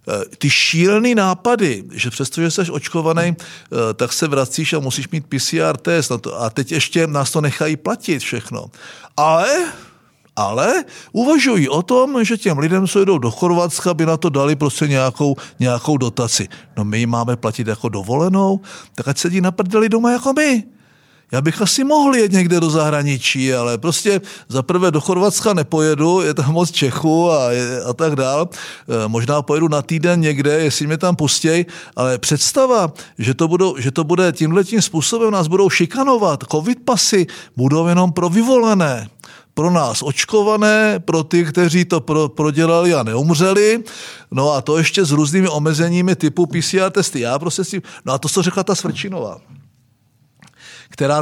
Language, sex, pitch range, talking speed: Czech, male, 135-185 Hz, 165 wpm